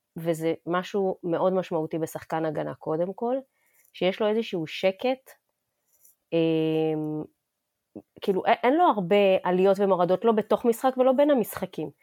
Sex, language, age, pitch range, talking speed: female, Hebrew, 20-39, 170-230 Hz, 125 wpm